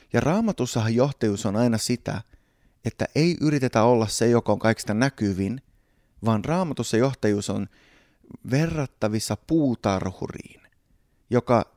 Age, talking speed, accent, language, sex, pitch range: 30-49, 110 wpm, native, Finnish, male, 100-125 Hz